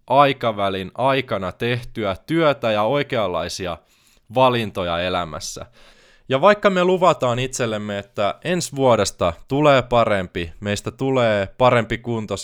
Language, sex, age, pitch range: Finnish, male, 20-39, 95-130 Hz